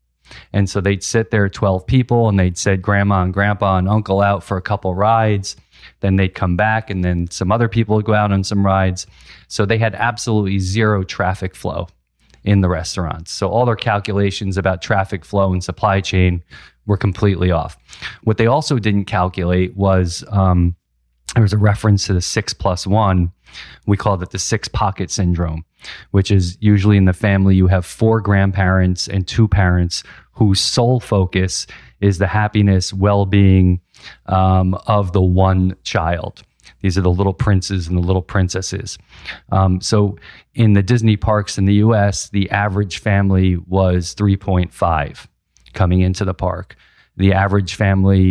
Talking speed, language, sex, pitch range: 165 wpm, English, male, 90-105 Hz